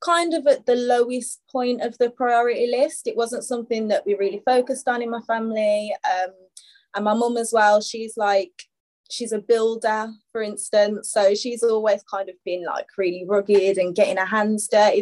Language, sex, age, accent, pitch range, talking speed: English, female, 20-39, British, 210-250 Hz, 190 wpm